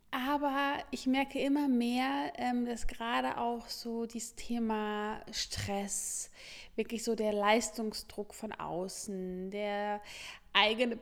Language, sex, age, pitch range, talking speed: German, female, 20-39, 220-265 Hz, 110 wpm